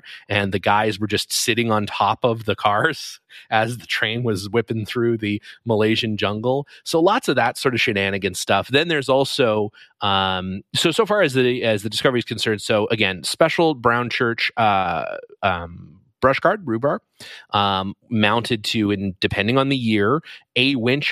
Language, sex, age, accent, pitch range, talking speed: English, male, 30-49, American, 100-125 Hz, 175 wpm